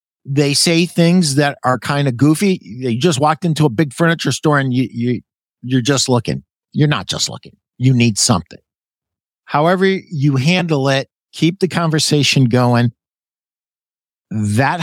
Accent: American